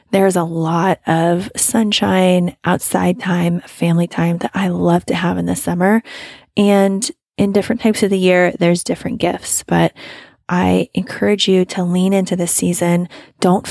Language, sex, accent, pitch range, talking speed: English, female, American, 175-205 Hz, 160 wpm